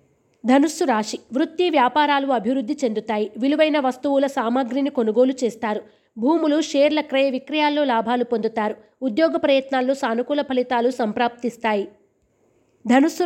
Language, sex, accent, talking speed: Telugu, female, native, 105 wpm